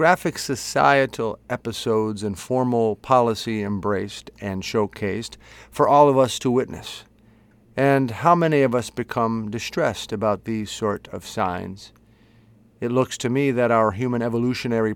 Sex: male